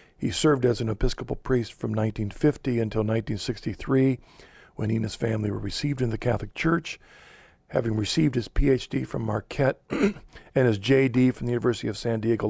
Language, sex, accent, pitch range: English, male, American, 105-130 Hz